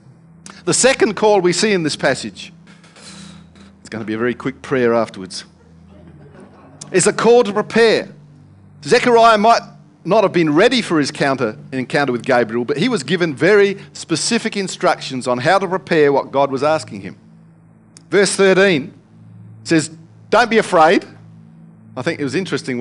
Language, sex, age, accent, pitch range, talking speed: English, male, 50-69, Australian, 140-195 Hz, 160 wpm